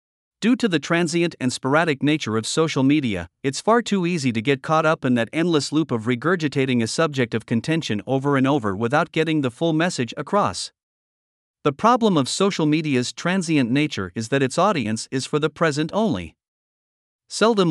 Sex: male